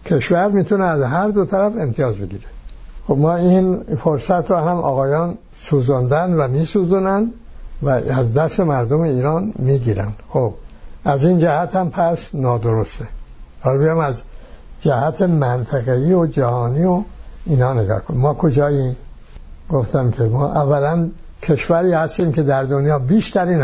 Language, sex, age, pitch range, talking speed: English, male, 60-79, 130-170 Hz, 135 wpm